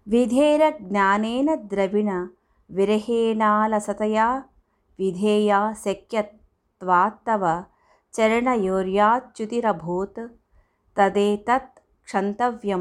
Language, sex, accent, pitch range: Telugu, female, native, 190-230 Hz